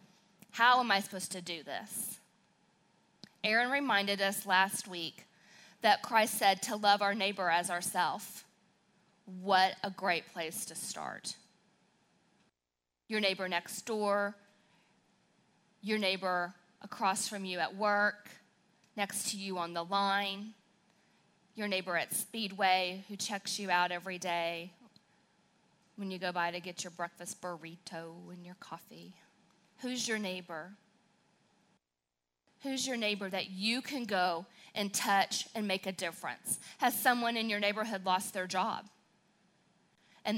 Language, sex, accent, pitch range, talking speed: English, female, American, 185-220 Hz, 135 wpm